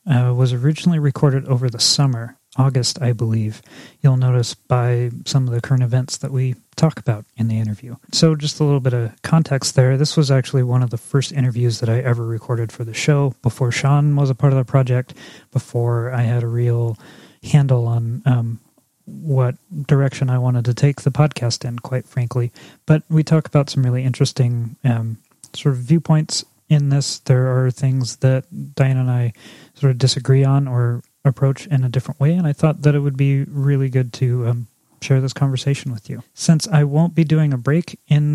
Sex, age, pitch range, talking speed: male, 30-49, 125-145 Hz, 200 wpm